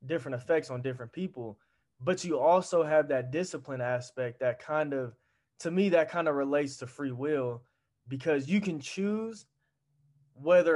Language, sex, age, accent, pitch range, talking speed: English, male, 20-39, American, 130-160 Hz, 160 wpm